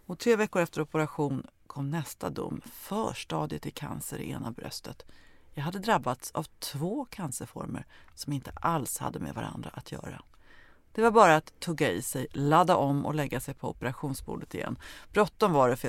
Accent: native